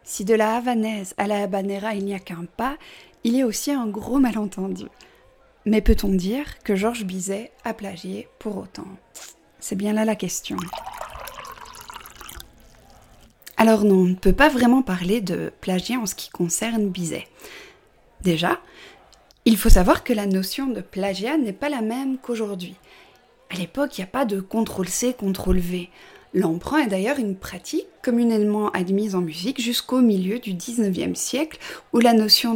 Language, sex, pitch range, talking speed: French, female, 195-265 Hz, 165 wpm